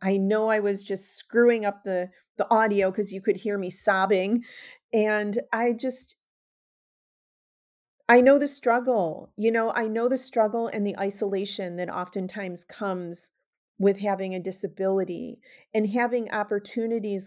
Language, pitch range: English, 185-225 Hz